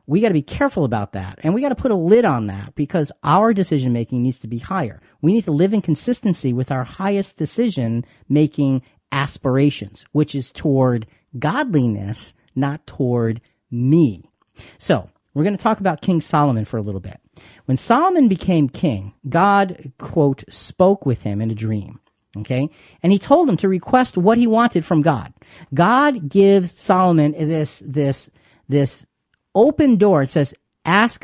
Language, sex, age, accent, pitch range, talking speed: English, male, 40-59, American, 120-175 Hz, 170 wpm